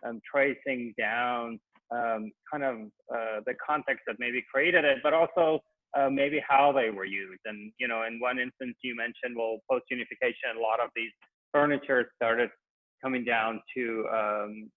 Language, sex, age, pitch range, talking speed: English, male, 30-49, 115-150 Hz, 165 wpm